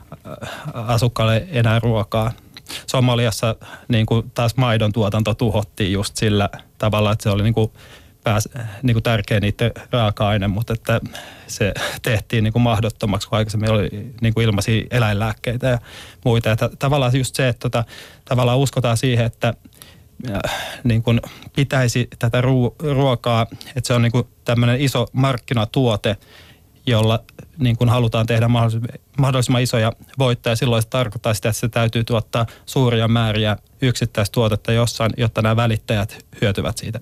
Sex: male